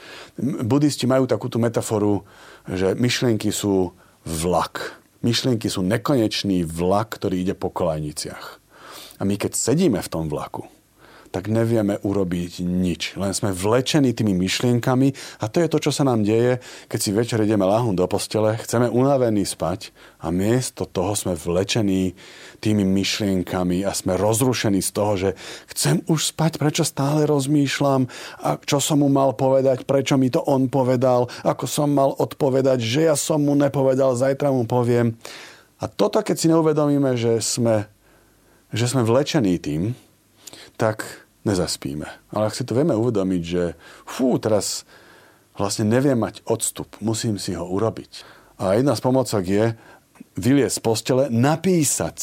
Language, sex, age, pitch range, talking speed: Slovak, male, 30-49, 95-130 Hz, 150 wpm